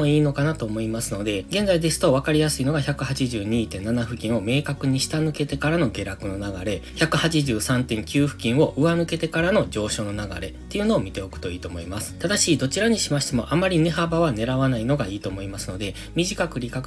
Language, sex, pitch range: Japanese, male, 110-155 Hz